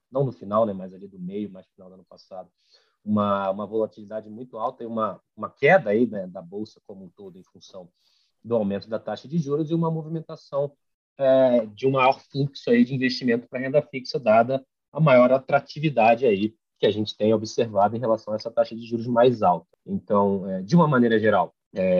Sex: male